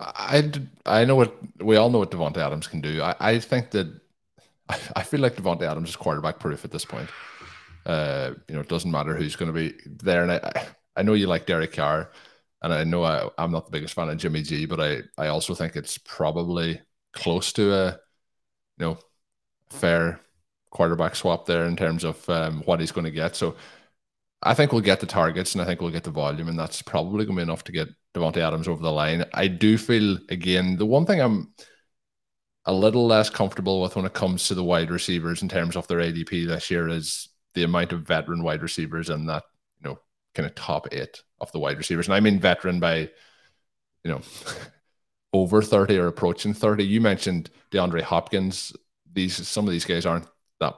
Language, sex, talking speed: English, male, 215 wpm